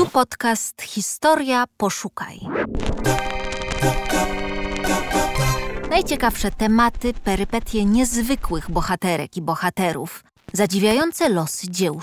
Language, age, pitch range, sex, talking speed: Polish, 20-39, 160-210 Hz, female, 70 wpm